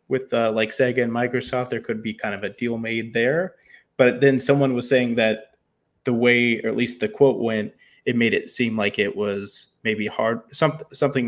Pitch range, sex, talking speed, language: 110-130 Hz, male, 205 wpm, English